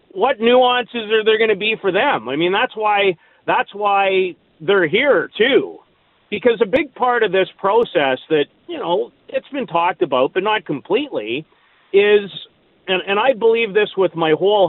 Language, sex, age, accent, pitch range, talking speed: English, male, 40-59, American, 190-280 Hz, 180 wpm